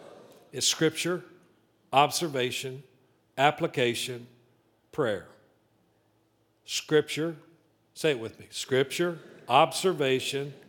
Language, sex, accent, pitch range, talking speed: English, male, American, 110-170 Hz, 65 wpm